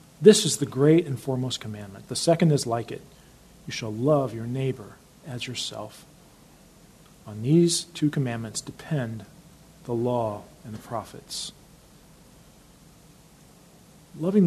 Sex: male